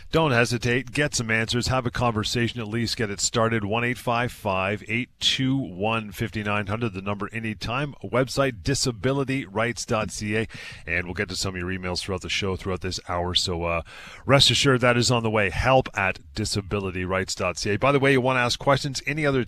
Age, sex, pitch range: 30-49, male, 100-125 Hz